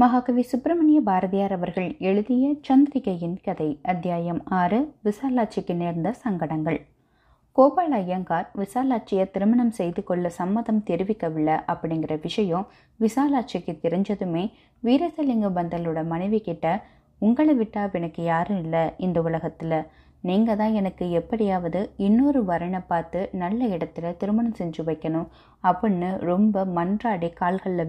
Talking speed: 110 wpm